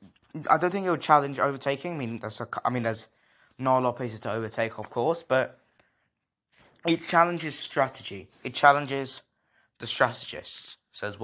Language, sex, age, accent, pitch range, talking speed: English, male, 20-39, British, 120-150 Hz, 160 wpm